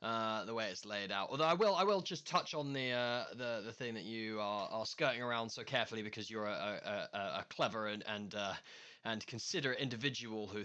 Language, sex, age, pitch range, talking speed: English, male, 10-29, 115-175 Hz, 235 wpm